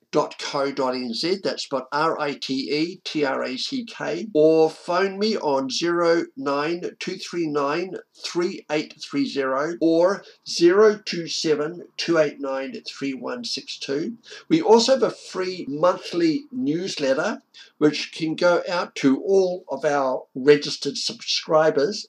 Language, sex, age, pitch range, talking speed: English, male, 60-79, 145-190 Hz, 155 wpm